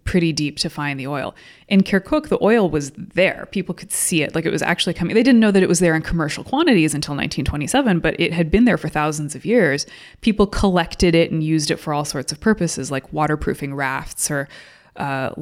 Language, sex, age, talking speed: English, female, 20-39, 225 wpm